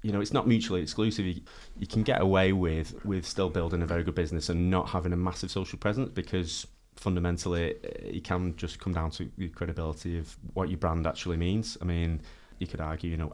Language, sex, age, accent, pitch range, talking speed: English, male, 30-49, British, 80-95 Hz, 225 wpm